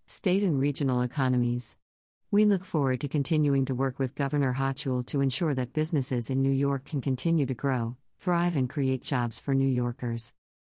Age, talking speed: 50-69, 180 wpm